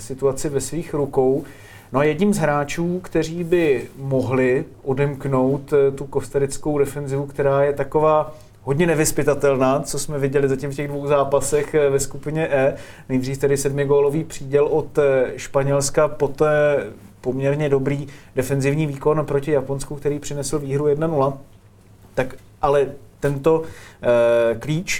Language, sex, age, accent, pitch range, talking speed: Czech, male, 30-49, native, 135-155 Hz, 125 wpm